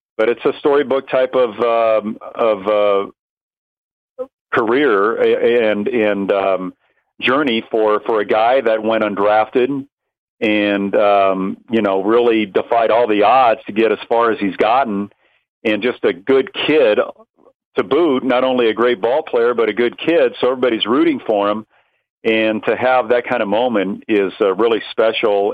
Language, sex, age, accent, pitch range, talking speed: English, male, 50-69, American, 100-130 Hz, 165 wpm